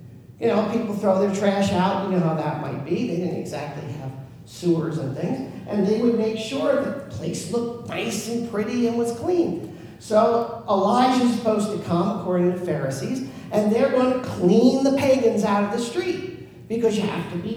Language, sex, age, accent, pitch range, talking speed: English, male, 50-69, American, 180-245 Hz, 200 wpm